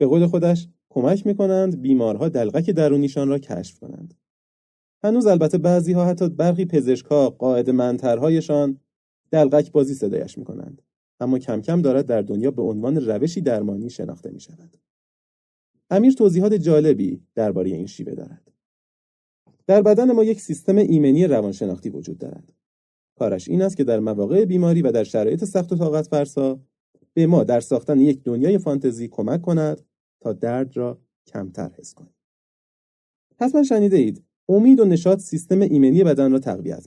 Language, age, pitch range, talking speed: Persian, 30-49, 130-190 Hz, 145 wpm